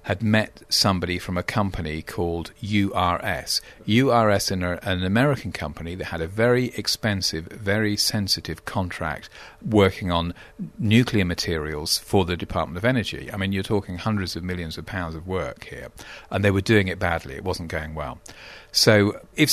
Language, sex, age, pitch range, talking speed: English, male, 40-59, 90-115 Hz, 165 wpm